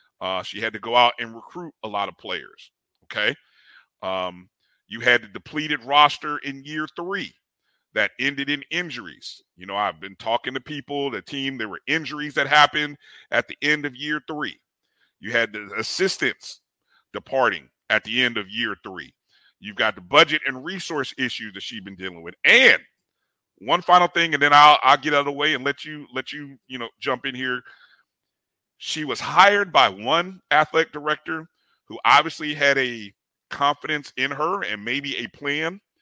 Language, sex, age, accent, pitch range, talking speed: English, male, 40-59, American, 125-155 Hz, 185 wpm